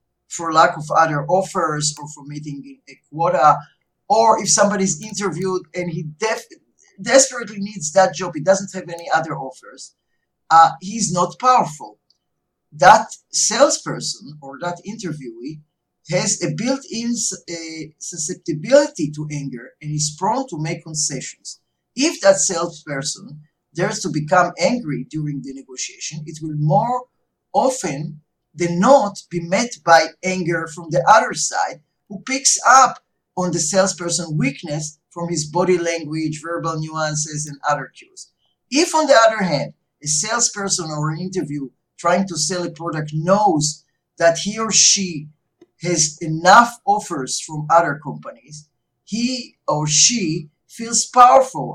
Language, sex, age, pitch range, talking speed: English, male, 50-69, 150-200 Hz, 140 wpm